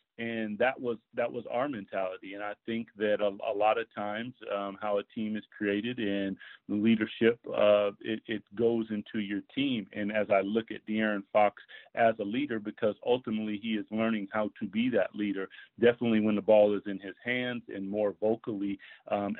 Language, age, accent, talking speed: English, 40-59, American, 200 wpm